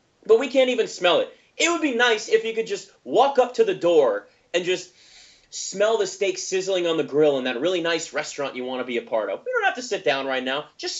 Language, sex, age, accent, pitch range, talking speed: English, male, 30-49, American, 155-255 Hz, 260 wpm